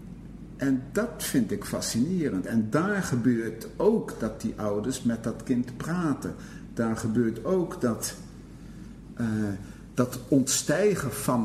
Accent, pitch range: Dutch, 115-140 Hz